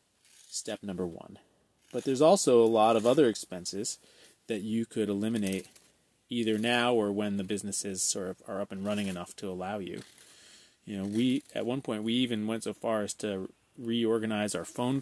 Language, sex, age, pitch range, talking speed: English, male, 20-39, 100-115 Hz, 190 wpm